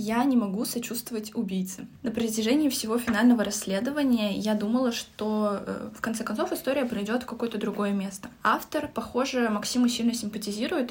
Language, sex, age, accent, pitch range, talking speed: Russian, female, 10-29, native, 205-240 Hz, 150 wpm